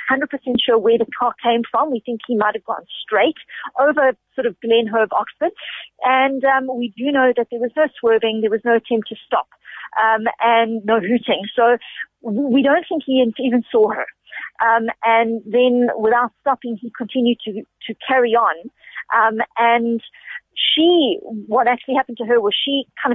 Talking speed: 180 wpm